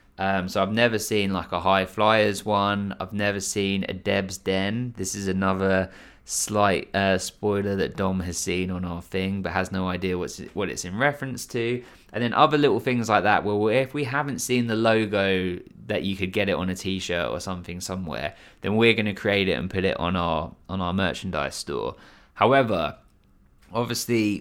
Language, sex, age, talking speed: English, male, 20-39, 200 wpm